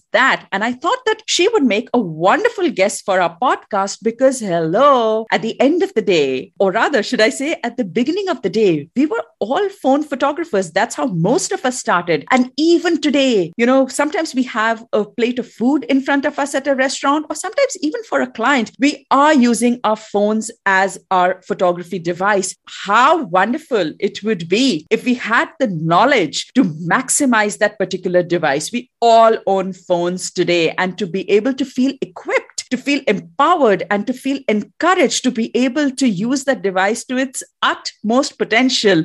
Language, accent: English, Indian